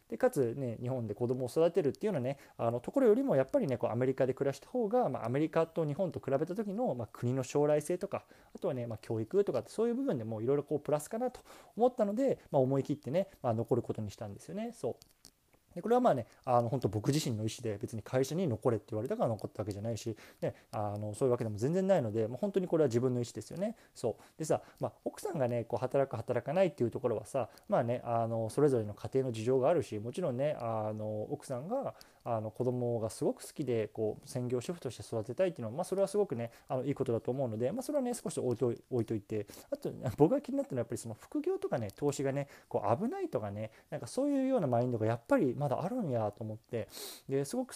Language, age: Japanese, 20-39